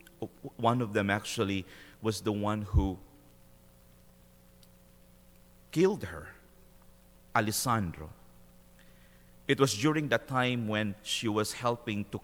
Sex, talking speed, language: male, 105 wpm, English